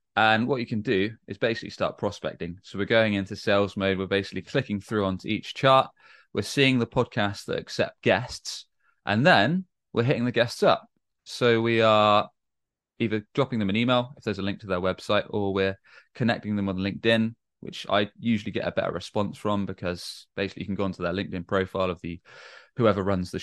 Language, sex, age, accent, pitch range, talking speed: English, male, 20-39, British, 95-110 Hz, 200 wpm